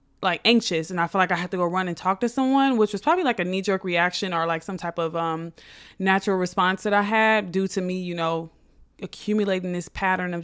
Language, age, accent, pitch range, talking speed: English, 20-39, American, 180-225 Hz, 245 wpm